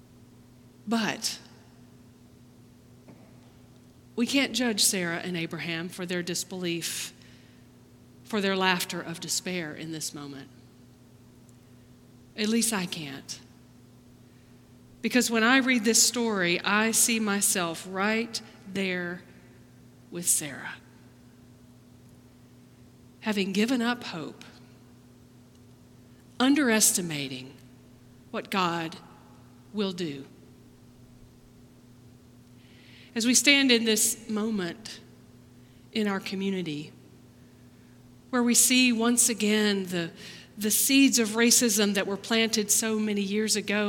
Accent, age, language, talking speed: American, 40-59, English, 95 wpm